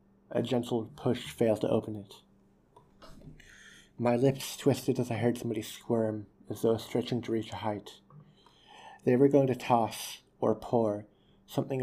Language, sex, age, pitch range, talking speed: English, male, 30-49, 110-120 Hz, 150 wpm